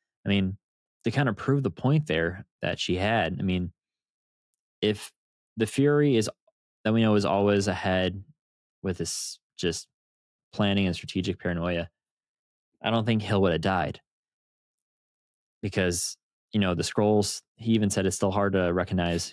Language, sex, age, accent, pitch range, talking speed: English, male, 20-39, American, 85-105 Hz, 160 wpm